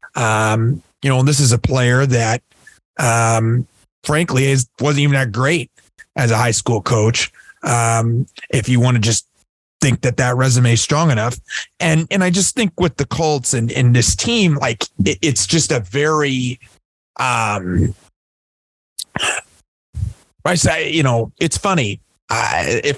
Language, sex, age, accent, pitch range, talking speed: English, male, 30-49, American, 115-140 Hz, 160 wpm